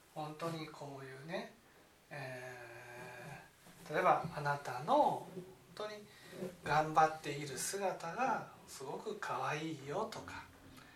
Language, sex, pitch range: Japanese, male, 155-255 Hz